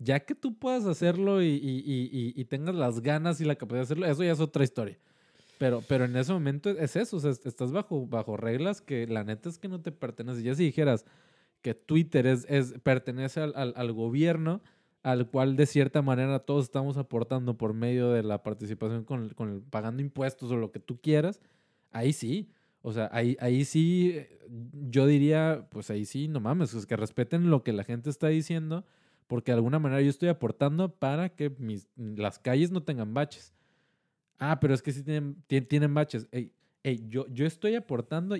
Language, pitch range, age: Spanish, 125-165 Hz, 20-39